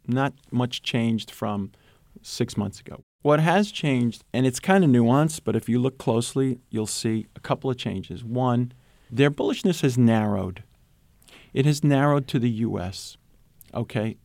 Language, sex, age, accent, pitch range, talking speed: English, male, 40-59, American, 105-135 Hz, 160 wpm